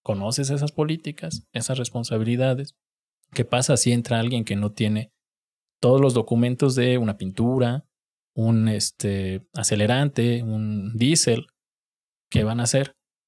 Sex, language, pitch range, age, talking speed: male, Spanish, 115-140 Hz, 20-39, 125 wpm